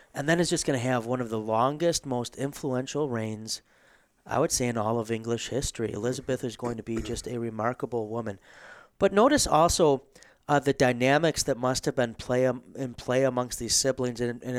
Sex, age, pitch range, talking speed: male, 30-49, 115-135 Hz, 205 wpm